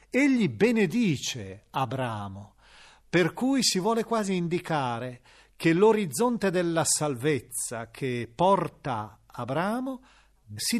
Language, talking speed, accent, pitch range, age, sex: Italian, 95 wpm, native, 125-180 Hz, 40-59, male